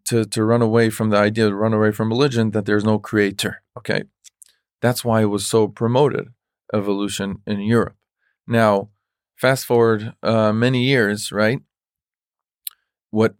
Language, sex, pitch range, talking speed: English, male, 105-125 Hz, 150 wpm